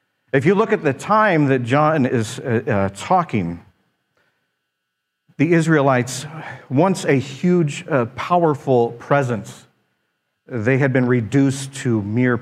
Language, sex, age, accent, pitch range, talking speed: English, male, 50-69, American, 130-215 Hz, 120 wpm